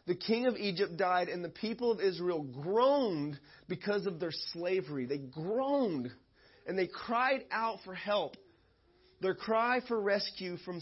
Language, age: English, 30-49